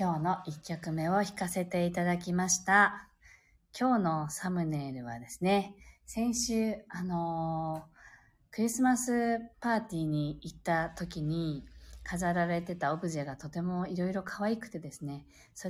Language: Japanese